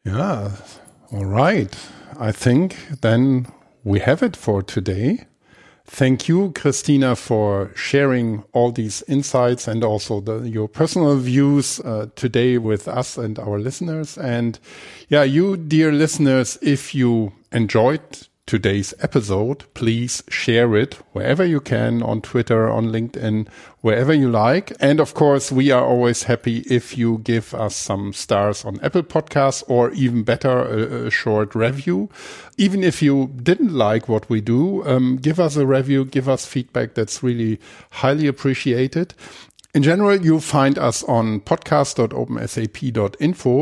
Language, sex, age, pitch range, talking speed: English, male, 50-69, 110-140 Hz, 145 wpm